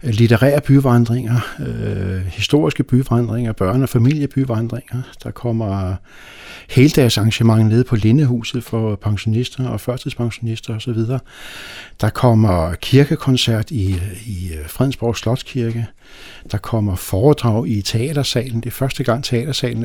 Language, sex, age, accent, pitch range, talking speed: Danish, male, 60-79, native, 105-135 Hz, 110 wpm